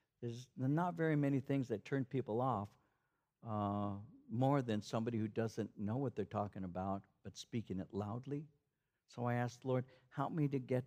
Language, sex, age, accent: English, male, 60-79, American